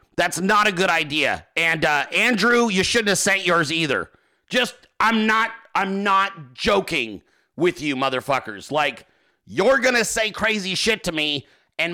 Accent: American